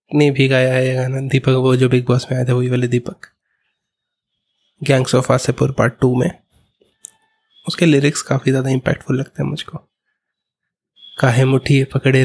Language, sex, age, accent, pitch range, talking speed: Hindi, male, 20-39, native, 130-145 Hz, 155 wpm